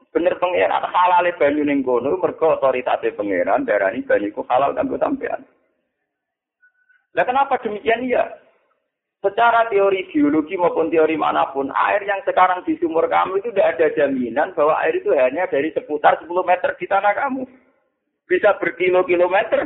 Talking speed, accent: 125 wpm, native